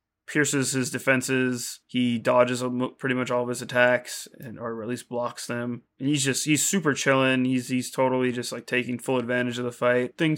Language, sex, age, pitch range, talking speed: English, male, 20-39, 120-135 Hz, 200 wpm